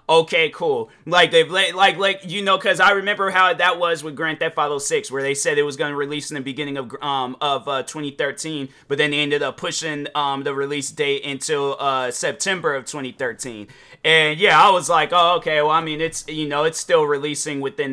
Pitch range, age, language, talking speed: 150-195 Hz, 30-49, English, 220 wpm